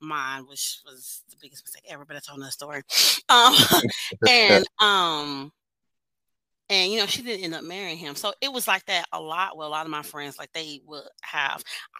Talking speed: 210 wpm